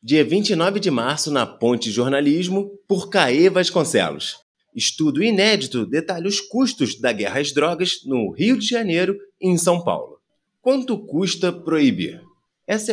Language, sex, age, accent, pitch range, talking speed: Portuguese, male, 30-49, Brazilian, 130-195 Hz, 145 wpm